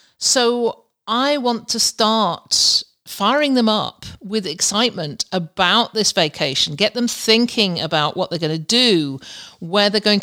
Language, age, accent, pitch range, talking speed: English, 50-69, British, 170-220 Hz, 145 wpm